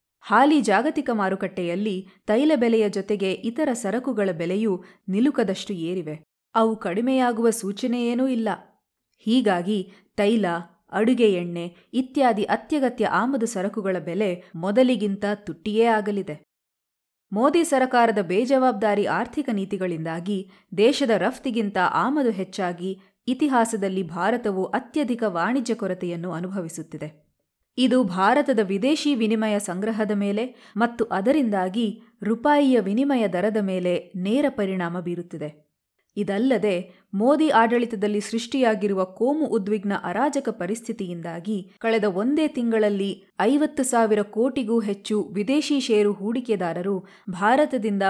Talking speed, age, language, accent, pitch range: 95 wpm, 20-39, Kannada, native, 190-240 Hz